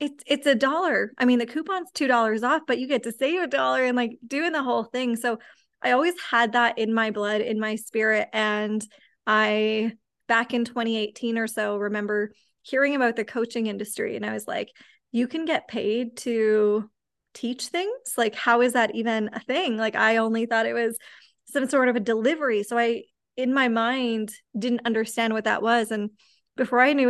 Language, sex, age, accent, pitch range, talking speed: English, female, 20-39, American, 220-245 Hz, 200 wpm